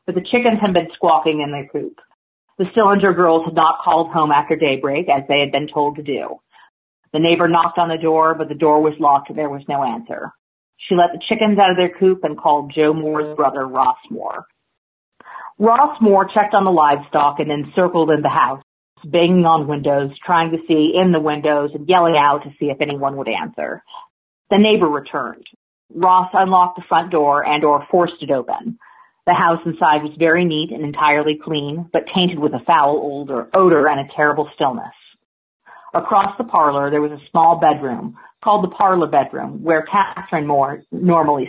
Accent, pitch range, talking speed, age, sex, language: American, 145-180 Hz, 190 wpm, 40-59, female, English